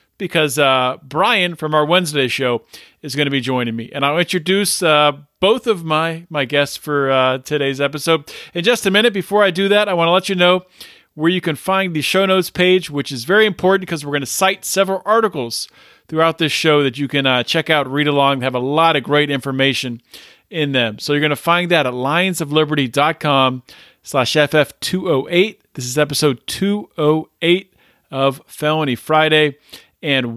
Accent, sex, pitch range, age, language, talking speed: American, male, 140-195 Hz, 40-59, English, 190 wpm